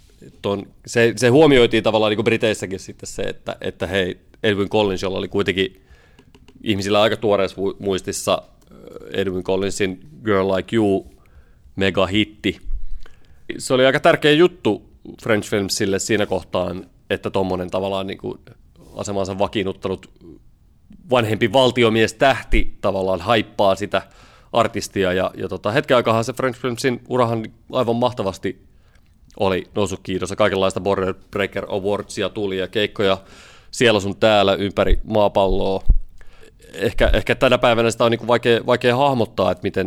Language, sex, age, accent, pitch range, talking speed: Finnish, male, 30-49, native, 95-115 Hz, 130 wpm